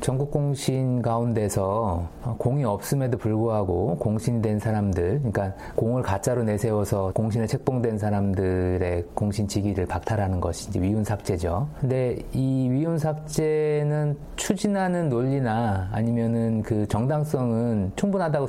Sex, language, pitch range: male, Korean, 105-145 Hz